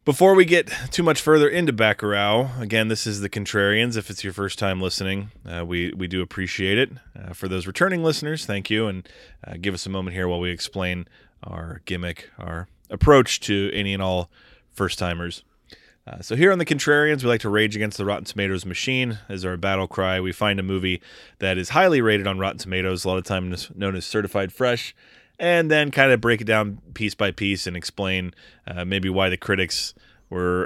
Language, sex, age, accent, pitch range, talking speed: English, male, 20-39, American, 95-120 Hz, 210 wpm